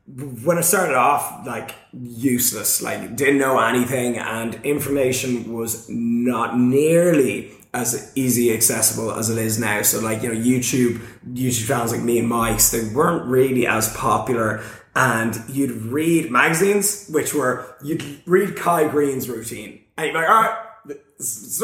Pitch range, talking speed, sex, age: 120-185 Hz, 155 wpm, male, 20-39